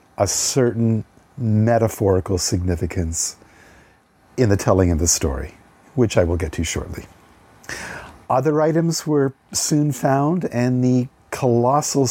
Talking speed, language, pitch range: 120 wpm, English, 95-125 Hz